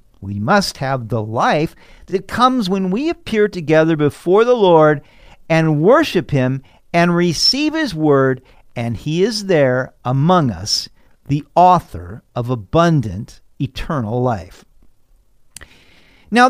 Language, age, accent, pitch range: English, 50-69, American, 130-190 Hz